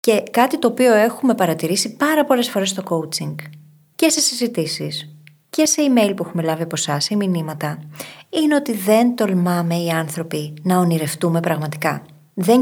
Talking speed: 160 wpm